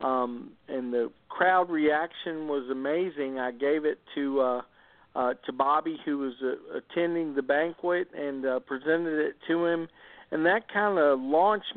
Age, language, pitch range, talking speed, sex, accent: 50-69, English, 140-170 Hz, 165 wpm, male, American